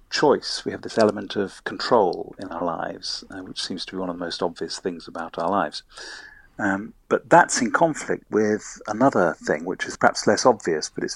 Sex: male